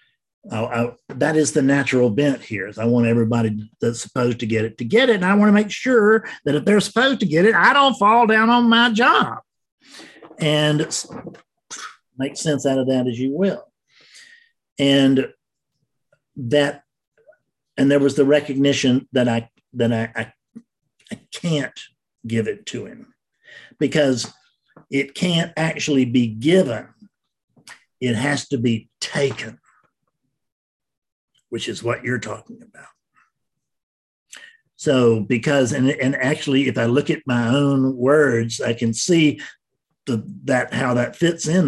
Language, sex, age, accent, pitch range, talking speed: English, male, 50-69, American, 115-160 Hz, 150 wpm